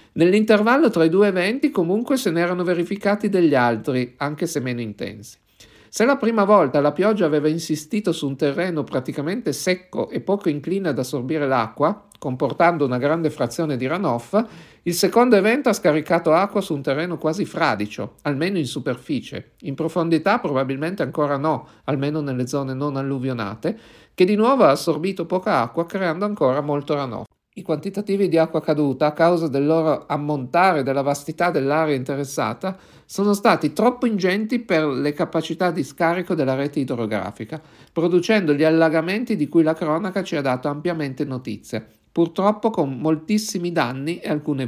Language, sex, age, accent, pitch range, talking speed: Italian, male, 50-69, native, 140-185 Hz, 165 wpm